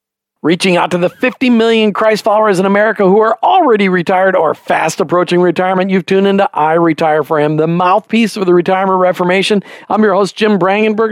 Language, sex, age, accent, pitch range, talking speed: English, male, 50-69, American, 170-200 Hz, 195 wpm